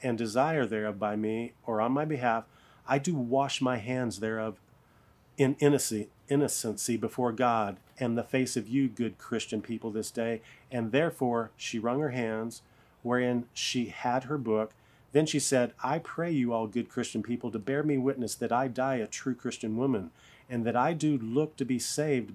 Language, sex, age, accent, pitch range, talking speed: English, male, 40-59, American, 115-140 Hz, 185 wpm